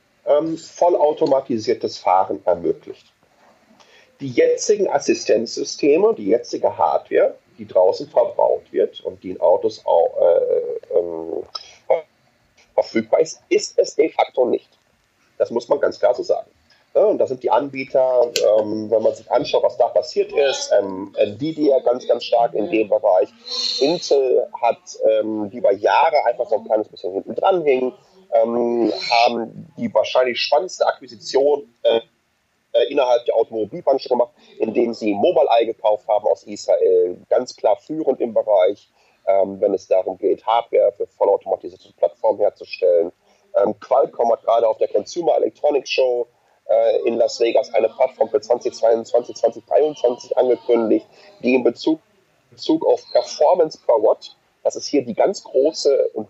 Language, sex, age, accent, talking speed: German, male, 30-49, German, 155 wpm